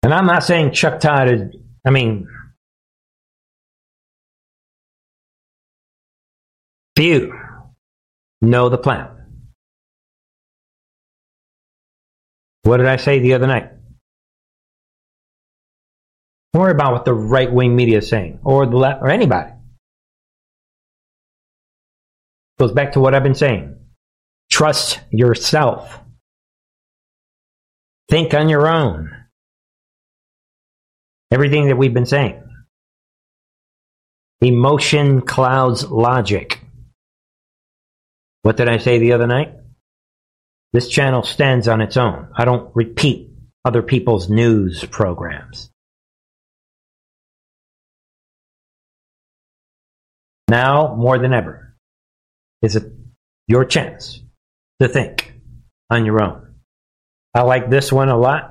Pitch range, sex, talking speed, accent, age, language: 105-135 Hz, male, 95 wpm, American, 50-69, English